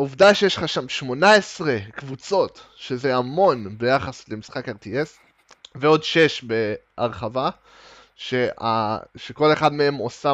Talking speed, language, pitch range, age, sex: 110 wpm, Hebrew, 120-155 Hz, 20-39, male